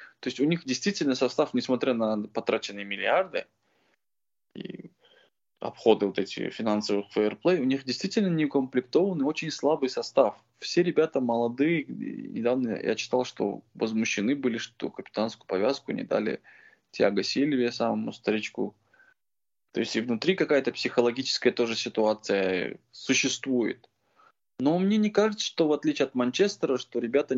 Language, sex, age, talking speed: Russian, male, 20-39, 135 wpm